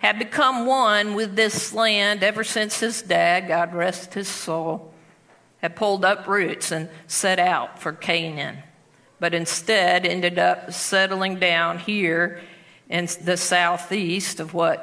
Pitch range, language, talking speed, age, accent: 175-230 Hz, English, 140 wpm, 50-69, American